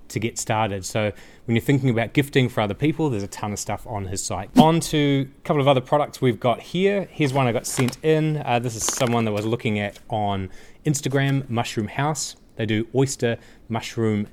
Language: English